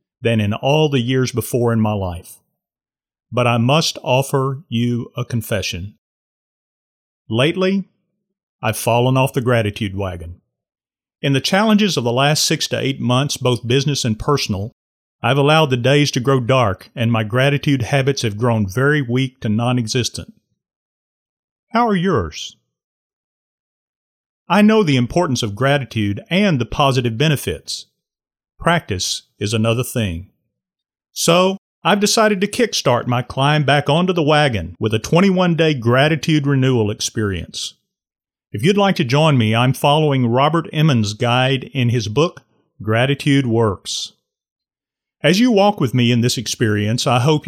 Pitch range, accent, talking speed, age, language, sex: 115-150 Hz, American, 145 wpm, 40-59, English, male